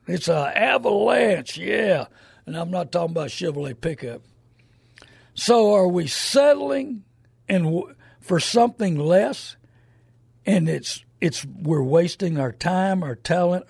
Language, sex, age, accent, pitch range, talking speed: English, male, 60-79, American, 125-190 Hz, 125 wpm